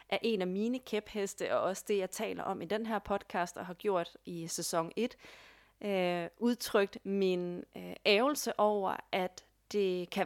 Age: 30-49